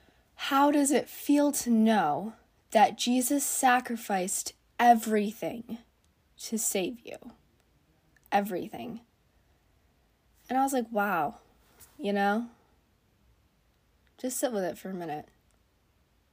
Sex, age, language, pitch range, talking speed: female, 20-39, English, 190-245 Hz, 105 wpm